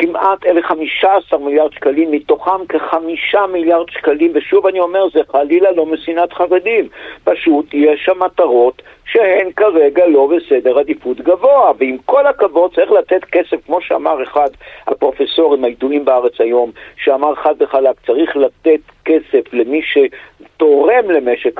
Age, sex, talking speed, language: 50-69, male, 140 wpm, Hebrew